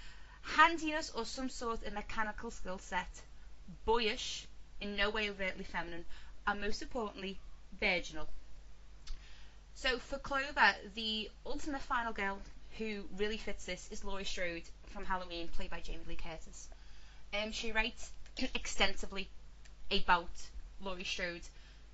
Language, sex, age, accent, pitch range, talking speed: English, female, 20-39, British, 180-220 Hz, 125 wpm